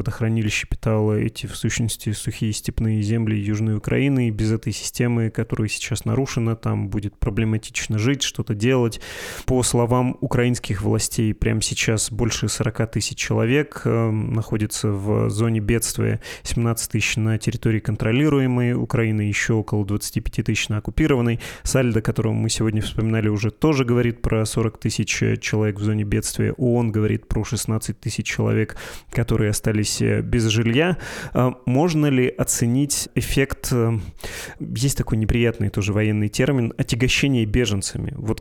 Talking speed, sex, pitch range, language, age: 135 wpm, male, 110-125 Hz, Russian, 20-39